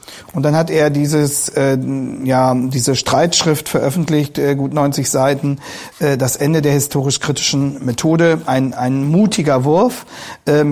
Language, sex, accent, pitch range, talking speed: German, male, German, 135-160 Hz, 140 wpm